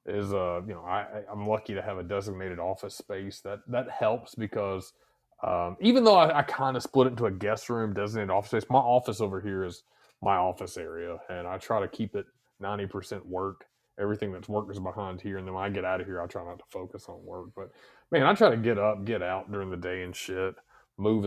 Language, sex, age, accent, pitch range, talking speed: English, male, 30-49, American, 95-125 Hz, 235 wpm